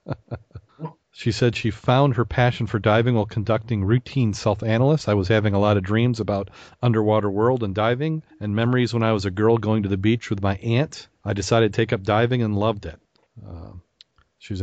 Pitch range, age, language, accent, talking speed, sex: 100-120 Hz, 40-59, English, American, 205 wpm, male